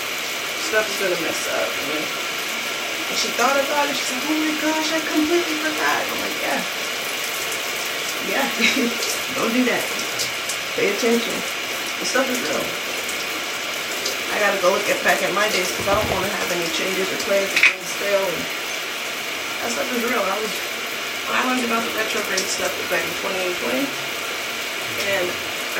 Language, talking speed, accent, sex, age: English, 160 wpm, American, female, 20-39